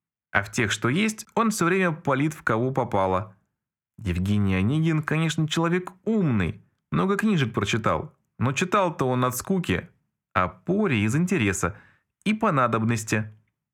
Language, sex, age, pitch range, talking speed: Russian, male, 20-39, 105-165 Hz, 135 wpm